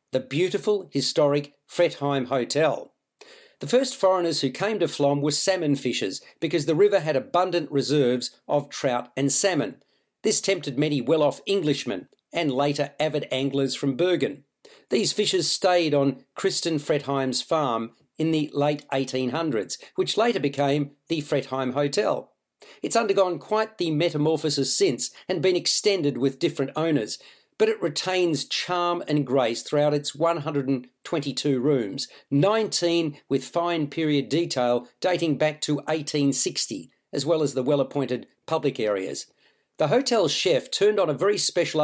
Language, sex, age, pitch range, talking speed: English, male, 40-59, 140-175 Hz, 140 wpm